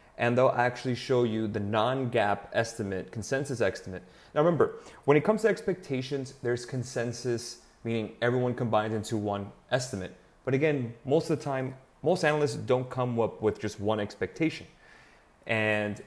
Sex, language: male, English